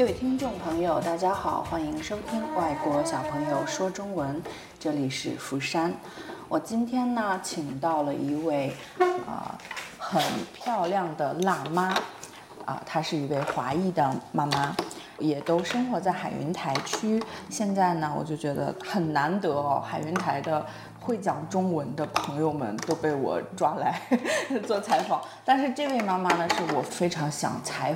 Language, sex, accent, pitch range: Chinese, female, native, 150-190 Hz